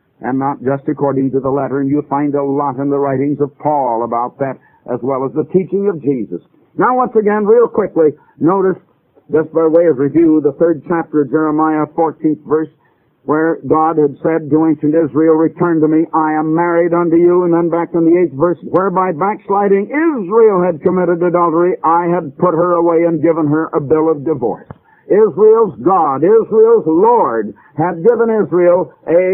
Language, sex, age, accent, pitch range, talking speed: English, male, 60-79, American, 150-180 Hz, 190 wpm